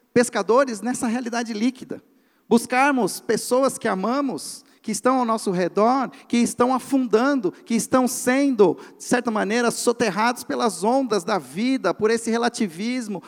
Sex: male